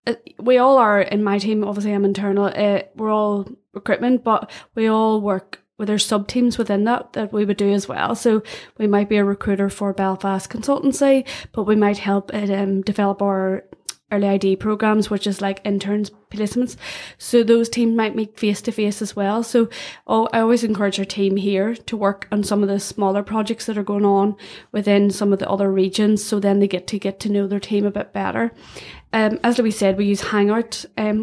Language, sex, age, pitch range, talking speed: English, female, 20-39, 195-220 Hz, 210 wpm